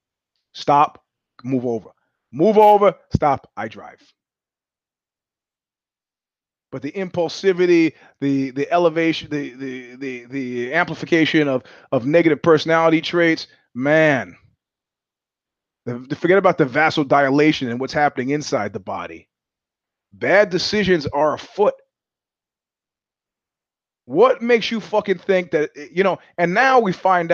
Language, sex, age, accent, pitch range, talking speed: English, male, 30-49, American, 145-190 Hz, 115 wpm